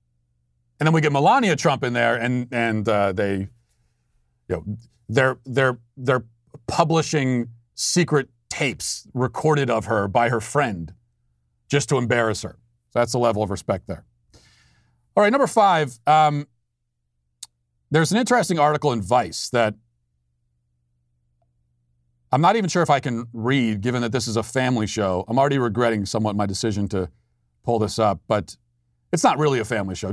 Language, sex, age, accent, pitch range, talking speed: English, male, 40-59, American, 100-140 Hz, 160 wpm